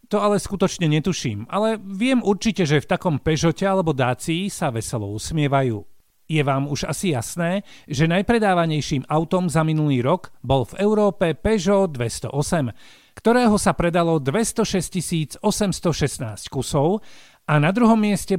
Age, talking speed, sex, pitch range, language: 50-69, 135 wpm, male, 140-195 Hz, Slovak